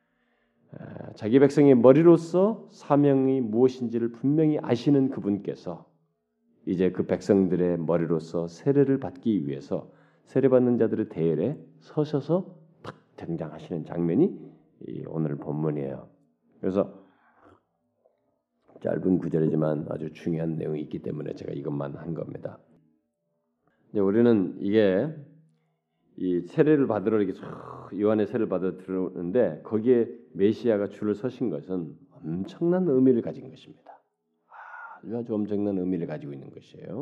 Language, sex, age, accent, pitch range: Korean, male, 40-59, native, 80-135 Hz